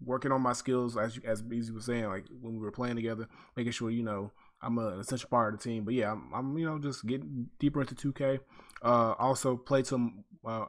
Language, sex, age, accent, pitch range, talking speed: English, male, 20-39, American, 115-145 Hz, 245 wpm